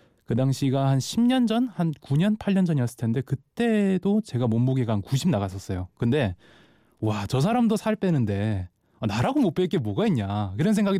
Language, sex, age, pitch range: Korean, male, 20-39, 105-155 Hz